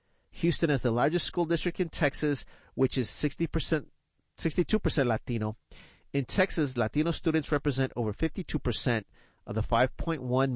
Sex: male